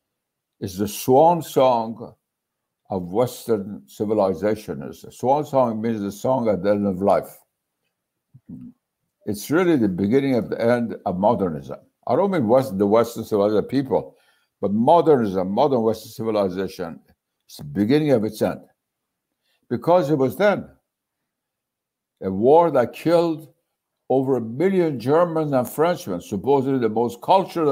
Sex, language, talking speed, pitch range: male, Turkish, 140 wpm, 110-165 Hz